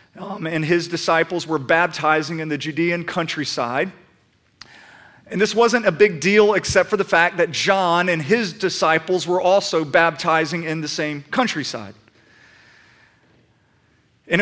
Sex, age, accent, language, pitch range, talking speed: male, 40-59, American, English, 155-200 Hz, 135 wpm